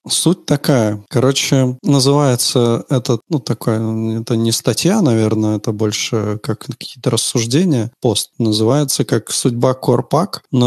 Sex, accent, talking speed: male, native, 125 wpm